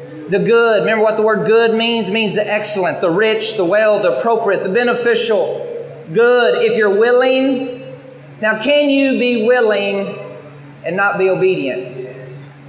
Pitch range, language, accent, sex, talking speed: 155-235 Hz, English, American, male, 155 wpm